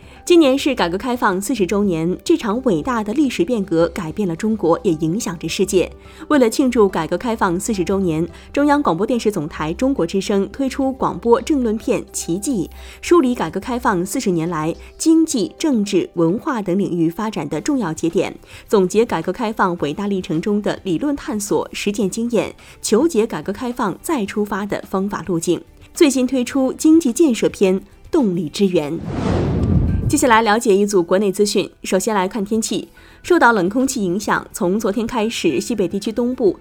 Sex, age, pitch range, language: female, 20-39, 180-245 Hz, Chinese